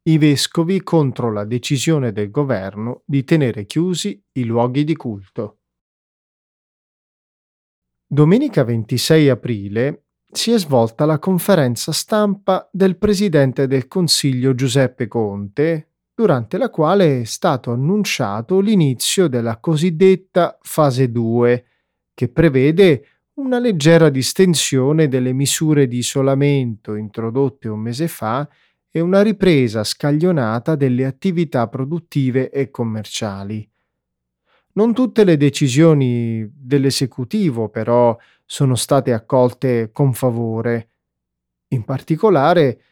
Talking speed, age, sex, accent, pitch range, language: 105 wpm, 30-49, male, native, 120-170 Hz, Italian